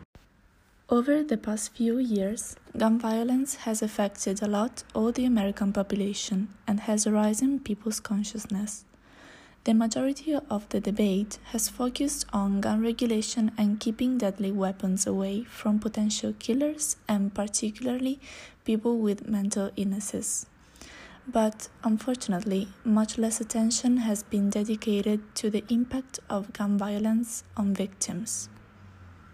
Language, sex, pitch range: English, female, 200-230 Hz